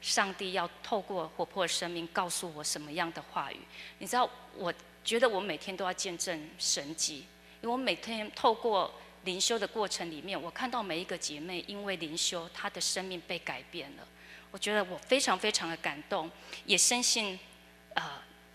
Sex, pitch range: female, 155-200 Hz